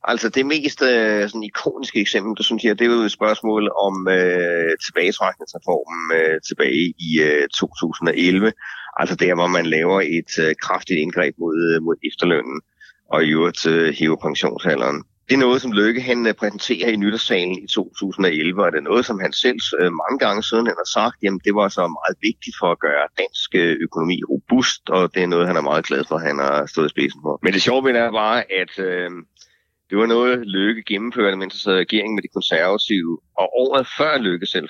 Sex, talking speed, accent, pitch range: male, 200 wpm, native, 90-115 Hz